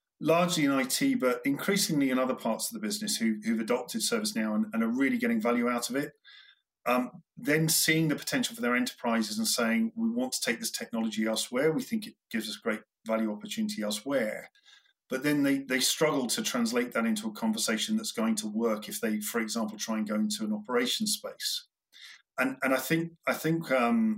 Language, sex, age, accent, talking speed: English, male, 40-59, British, 205 wpm